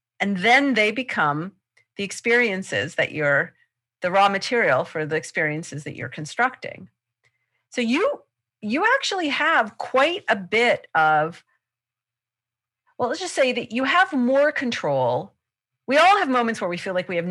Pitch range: 160-230 Hz